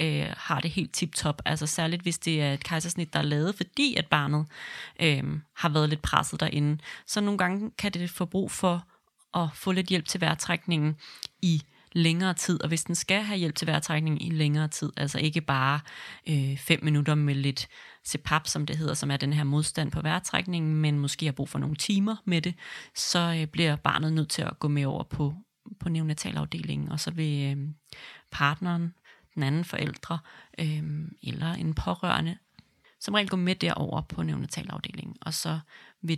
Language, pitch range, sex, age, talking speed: Danish, 150-175 Hz, female, 30-49, 190 wpm